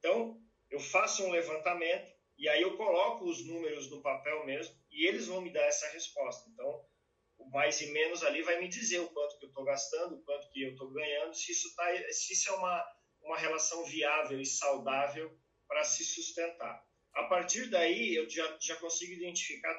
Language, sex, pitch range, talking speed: Vietnamese, male, 150-210 Hz, 195 wpm